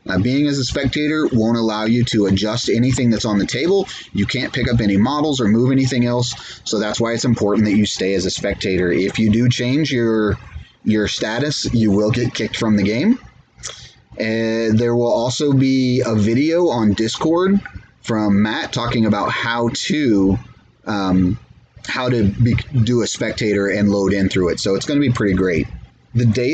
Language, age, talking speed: English, 30-49, 190 wpm